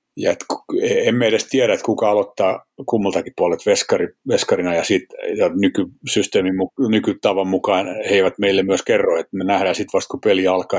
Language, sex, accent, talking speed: Finnish, male, native, 185 wpm